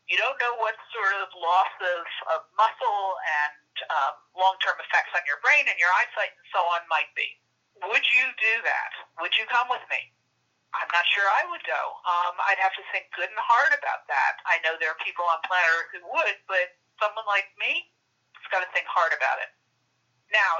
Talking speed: 210 wpm